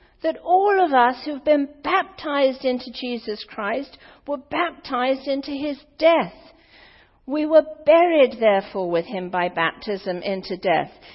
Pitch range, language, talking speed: 240-305 Hz, English, 135 wpm